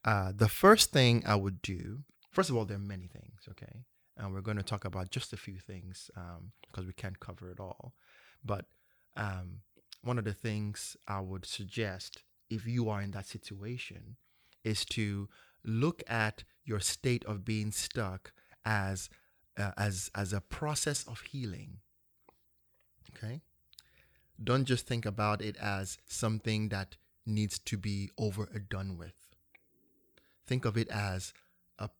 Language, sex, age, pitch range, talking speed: English, male, 30-49, 95-115 Hz, 160 wpm